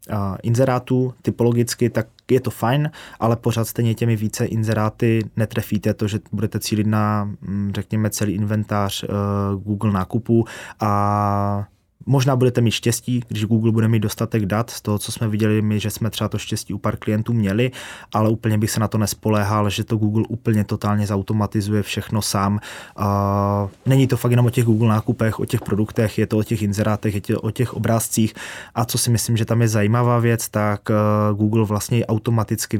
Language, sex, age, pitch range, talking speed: Czech, male, 20-39, 105-115 Hz, 175 wpm